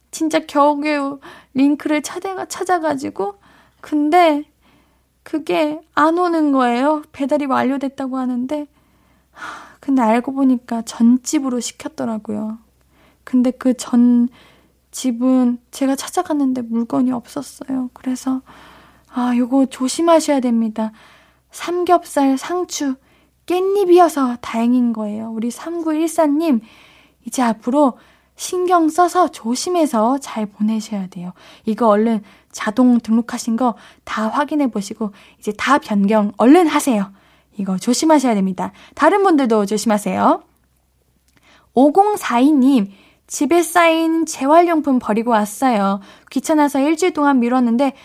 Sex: female